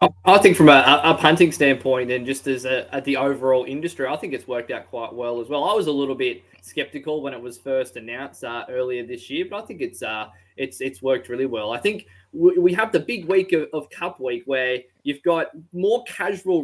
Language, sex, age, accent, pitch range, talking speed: English, male, 20-39, Australian, 125-155 Hz, 240 wpm